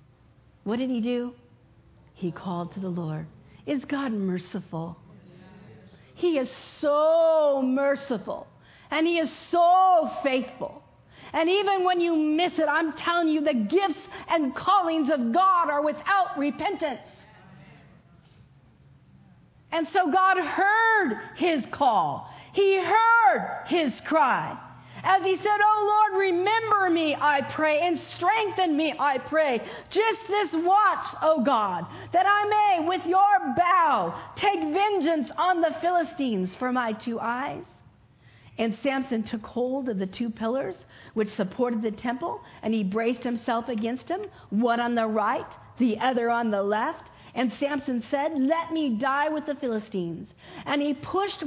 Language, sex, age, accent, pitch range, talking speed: English, female, 50-69, American, 235-360 Hz, 140 wpm